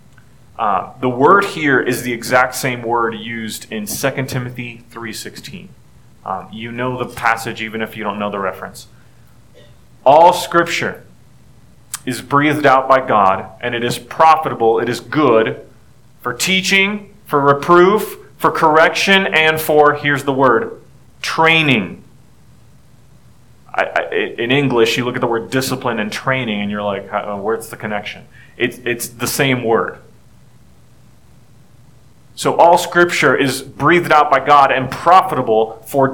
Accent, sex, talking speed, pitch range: American, male, 145 wpm, 120-155 Hz